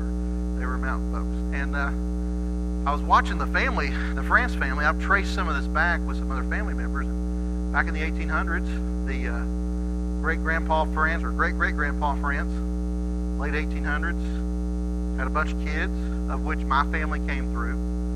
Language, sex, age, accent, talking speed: English, male, 40-59, American, 155 wpm